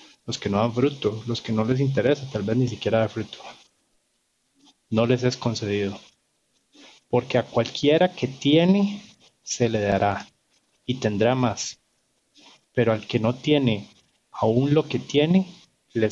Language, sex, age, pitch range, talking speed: Spanish, male, 30-49, 110-140 Hz, 155 wpm